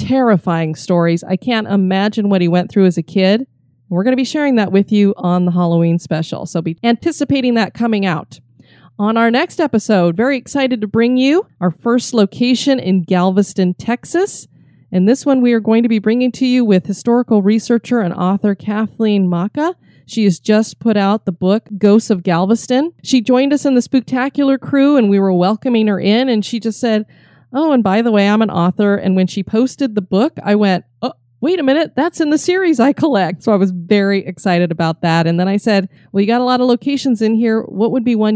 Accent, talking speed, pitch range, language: American, 220 wpm, 185-245 Hz, English